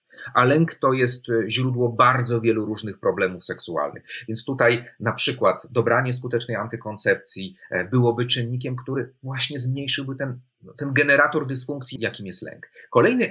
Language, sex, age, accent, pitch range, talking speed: Polish, male, 40-59, native, 115-135 Hz, 135 wpm